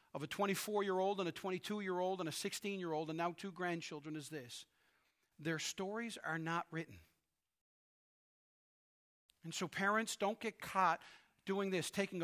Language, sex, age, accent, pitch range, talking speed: English, male, 40-59, American, 160-200 Hz, 140 wpm